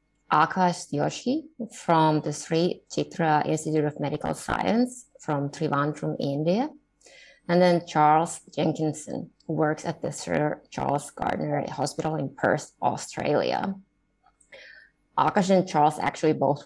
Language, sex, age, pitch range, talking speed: English, female, 20-39, 145-175 Hz, 120 wpm